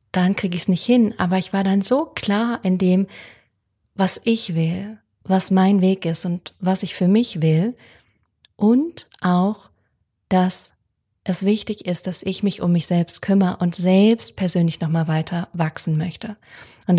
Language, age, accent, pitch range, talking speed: German, 30-49, German, 160-200 Hz, 170 wpm